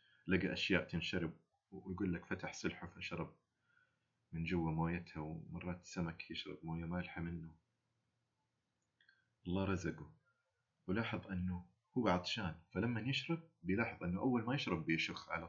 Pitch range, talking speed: 90-120 Hz, 125 wpm